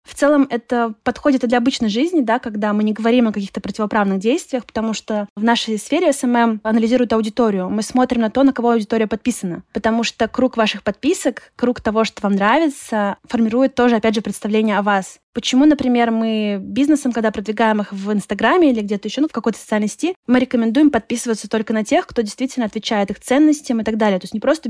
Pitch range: 215-245 Hz